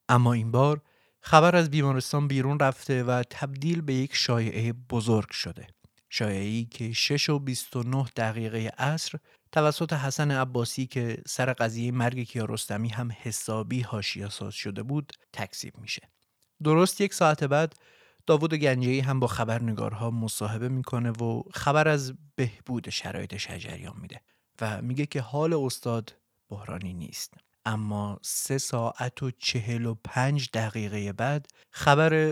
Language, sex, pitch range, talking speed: Persian, male, 110-140 Hz, 135 wpm